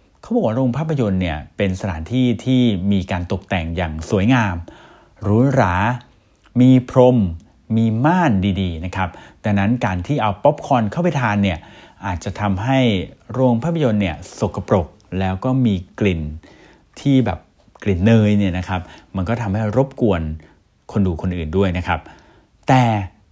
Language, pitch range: Thai, 95-130 Hz